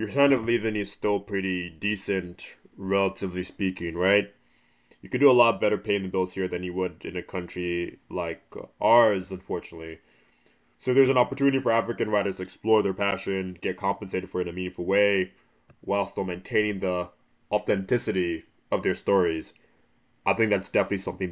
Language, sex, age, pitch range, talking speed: English, male, 20-39, 95-110 Hz, 175 wpm